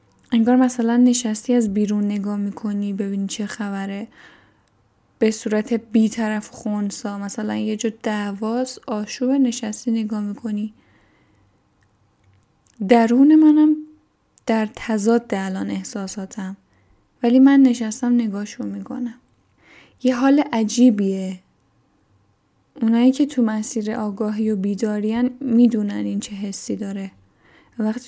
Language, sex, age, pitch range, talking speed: Persian, female, 10-29, 200-235 Hz, 105 wpm